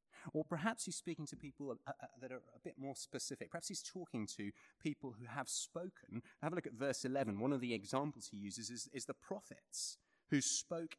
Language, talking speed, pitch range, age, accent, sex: English, 220 wpm, 105-145 Hz, 30-49, British, male